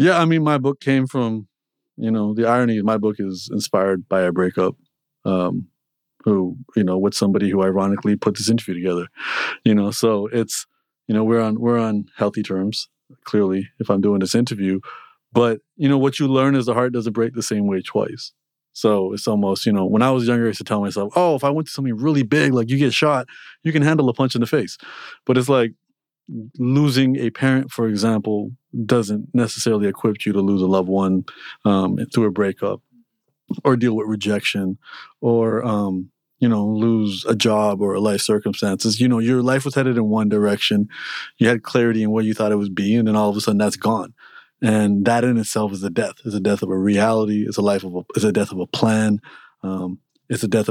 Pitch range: 100-120 Hz